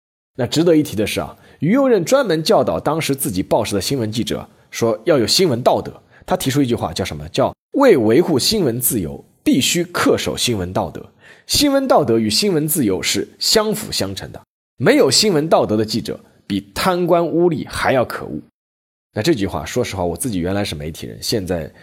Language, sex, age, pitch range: Chinese, male, 20-39, 90-150 Hz